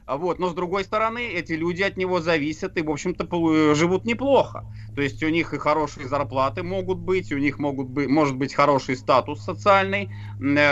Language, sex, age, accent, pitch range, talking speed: Russian, male, 30-49, native, 120-160 Hz, 185 wpm